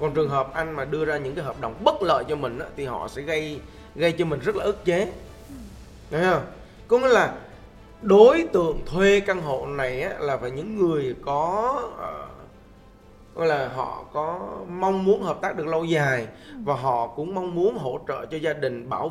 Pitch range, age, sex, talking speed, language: 125-185 Hz, 20-39, male, 205 wpm, Vietnamese